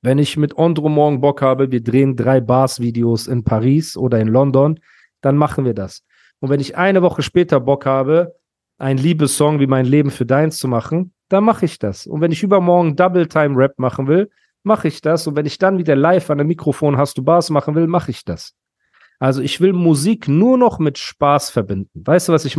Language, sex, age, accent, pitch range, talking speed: German, male, 40-59, German, 115-150 Hz, 220 wpm